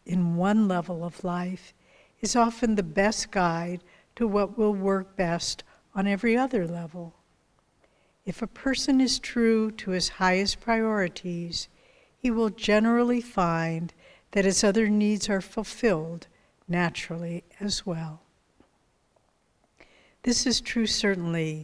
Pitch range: 170-210 Hz